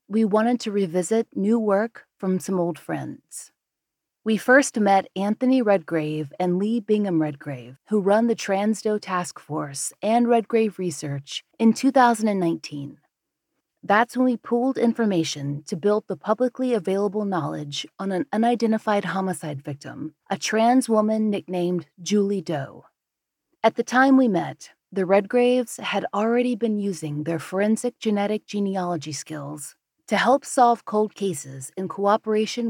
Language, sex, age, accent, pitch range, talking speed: English, female, 30-49, American, 170-225 Hz, 140 wpm